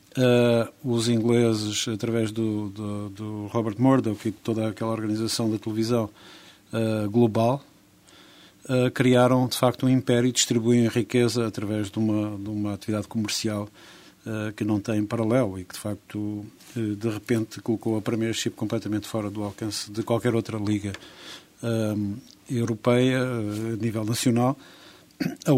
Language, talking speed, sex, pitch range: Portuguese, 150 wpm, male, 110-125 Hz